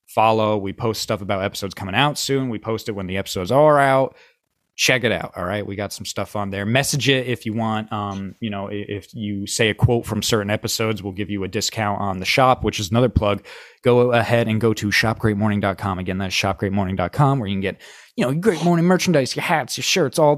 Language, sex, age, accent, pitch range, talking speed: English, male, 20-39, American, 105-135 Hz, 235 wpm